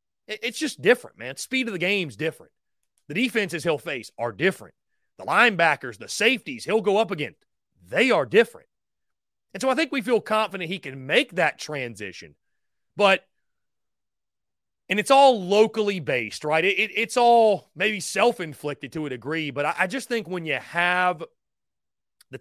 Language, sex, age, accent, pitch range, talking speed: English, male, 30-49, American, 155-220 Hz, 165 wpm